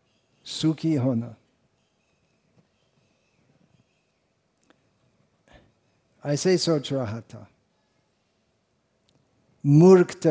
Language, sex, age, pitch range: Hindi, male, 50-69, 140-175 Hz